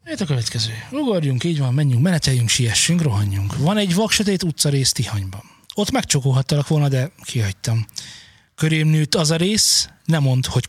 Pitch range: 120-155 Hz